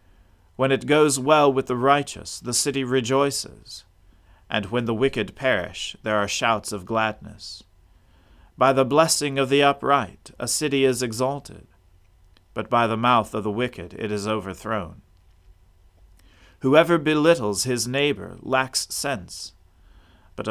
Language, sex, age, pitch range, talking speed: English, male, 40-59, 90-130 Hz, 140 wpm